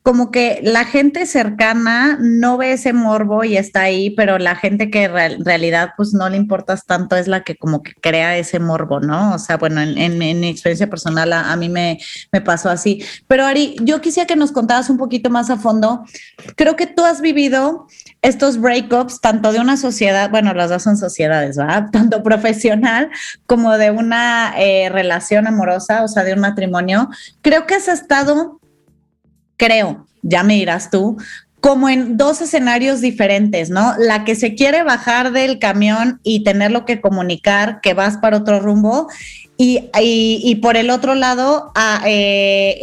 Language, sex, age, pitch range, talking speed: Spanish, female, 30-49, 200-260 Hz, 180 wpm